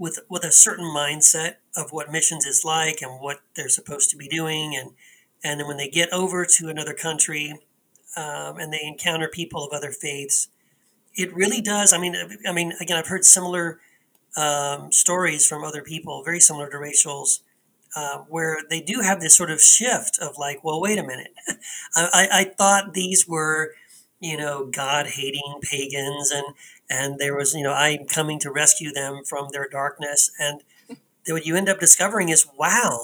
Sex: male